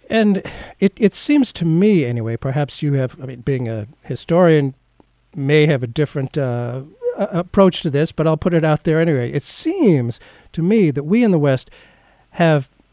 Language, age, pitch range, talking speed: English, 50-69, 130-175 Hz, 185 wpm